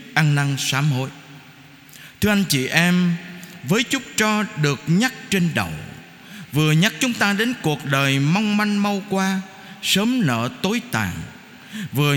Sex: male